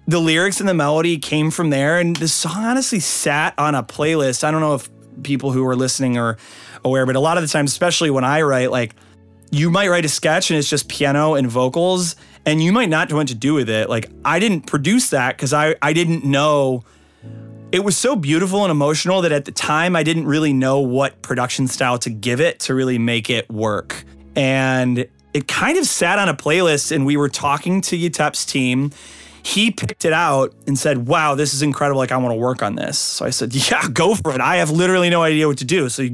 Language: English